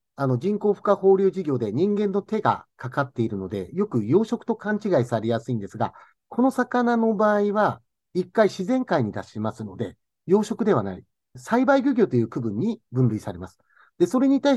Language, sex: Japanese, male